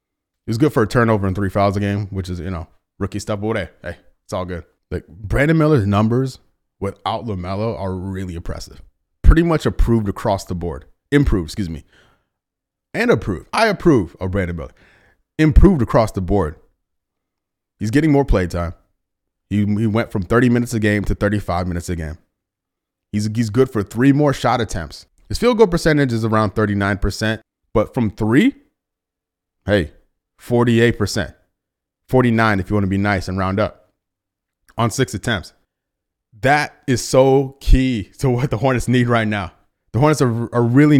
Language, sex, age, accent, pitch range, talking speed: English, male, 30-49, American, 90-120 Hz, 175 wpm